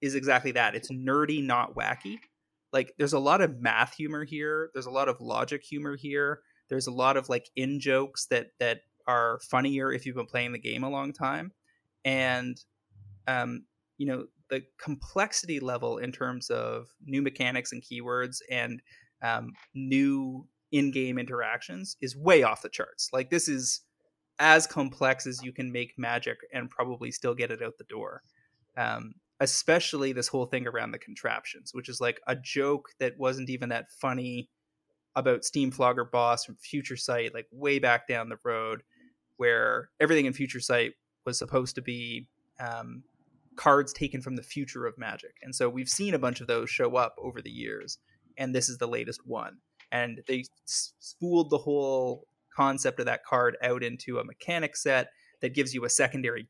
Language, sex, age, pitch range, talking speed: English, male, 20-39, 125-145 Hz, 180 wpm